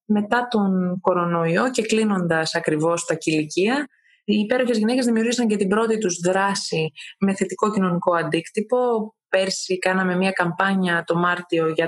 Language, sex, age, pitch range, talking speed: Greek, female, 20-39, 175-220 Hz, 140 wpm